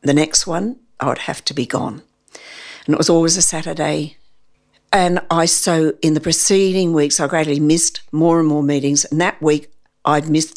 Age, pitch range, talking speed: 60-79, 145-180 Hz, 195 wpm